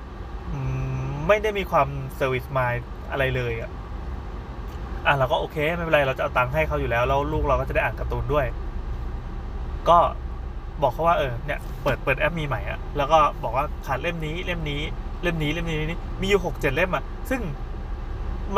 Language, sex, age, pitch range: Thai, male, 20-39, 115-170 Hz